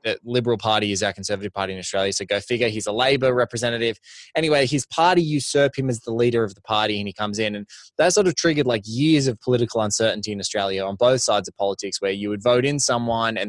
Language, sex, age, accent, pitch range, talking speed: English, male, 20-39, Australian, 110-140 Hz, 240 wpm